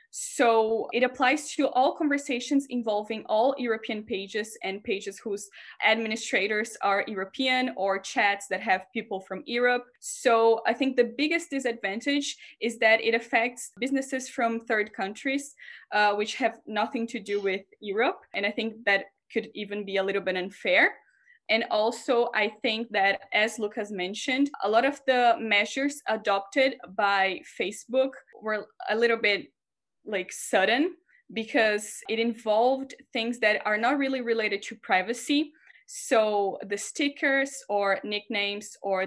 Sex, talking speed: female, 145 wpm